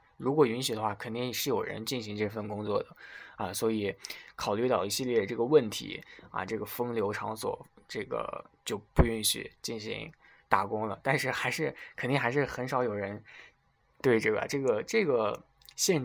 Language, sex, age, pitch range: Chinese, male, 20-39, 110-145 Hz